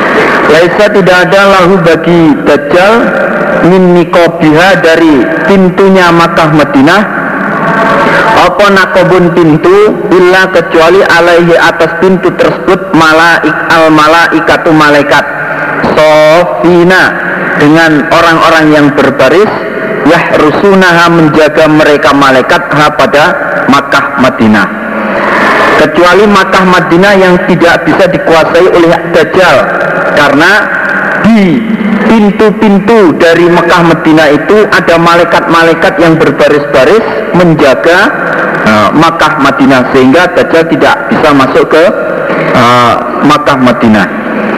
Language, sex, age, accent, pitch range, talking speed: Indonesian, male, 50-69, native, 165-195 Hz, 90 wpm